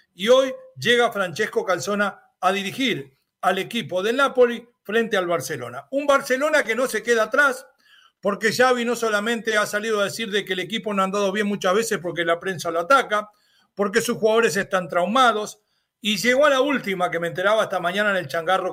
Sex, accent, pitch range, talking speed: male, Argentinian, 185-250 Hz, 200 wpm